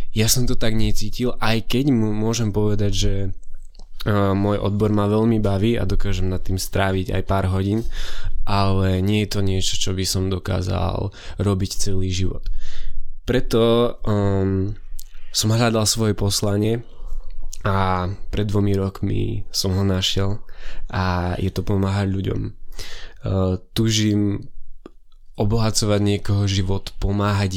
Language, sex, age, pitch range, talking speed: Slovak, male, 20-39, 95-105 Hz, 135 wpm